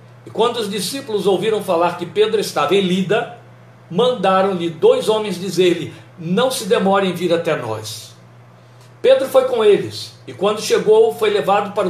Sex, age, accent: male, 60-79, Brazilian